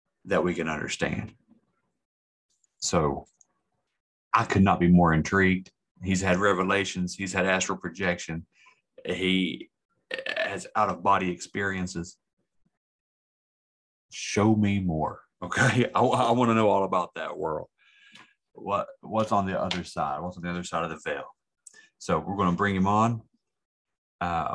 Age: 30-49